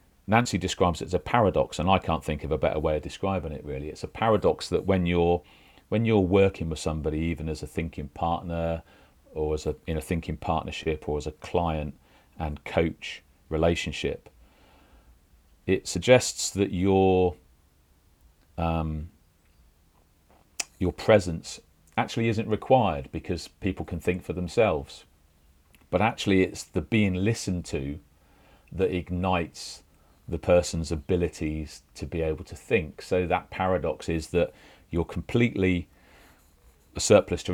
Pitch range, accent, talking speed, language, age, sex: 75-90 Hz, British, 145 wpm, English, 40-59, male